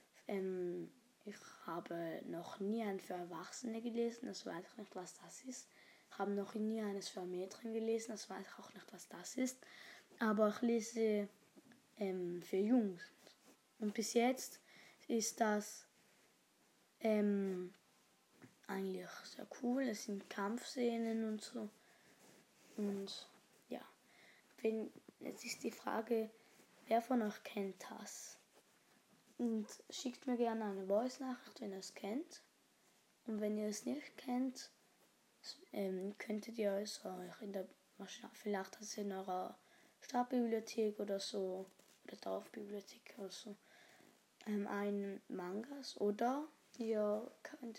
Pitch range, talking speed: 195-235 Hz, 125 wpm